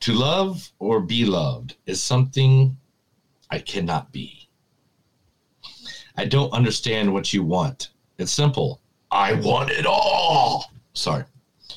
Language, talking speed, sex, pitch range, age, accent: English, 115 wpm, male, 105-140 Hz, 40-59, American